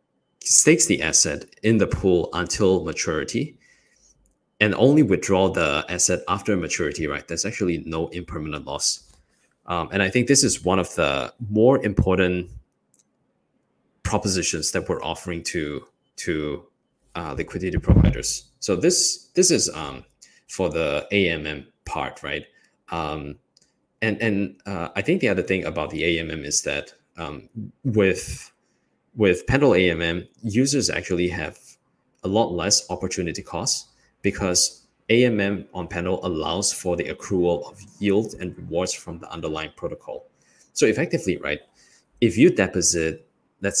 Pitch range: 85-105 Hz